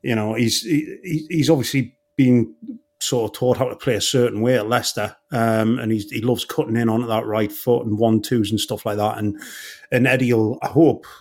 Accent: British